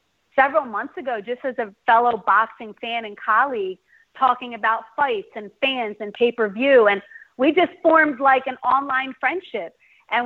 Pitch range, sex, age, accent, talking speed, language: 225-270 Hz, female, 30-49, American, 160 wpm, English